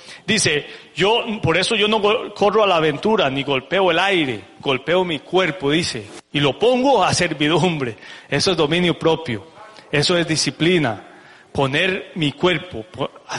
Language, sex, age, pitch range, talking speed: English, male, 40-59, 140-180 Hz, 150 wpm